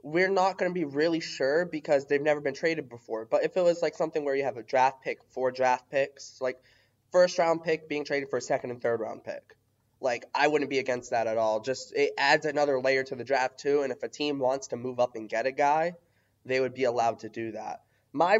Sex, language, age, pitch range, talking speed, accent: male, English, 20-39, 125-150 Hz, 255 wpm, American